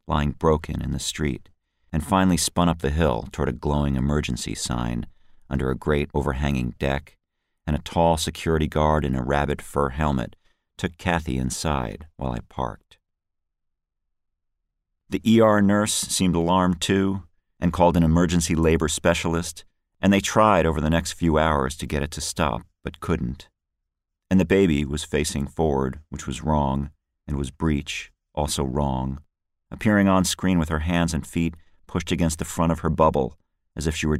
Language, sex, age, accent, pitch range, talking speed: English, male, 50-69, American, 70-85 Hz, 170 wpm